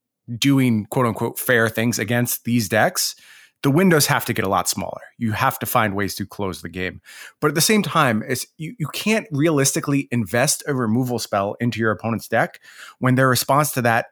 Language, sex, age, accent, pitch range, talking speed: English, male, 30-49, American, 115-155 Hz, 195 wpm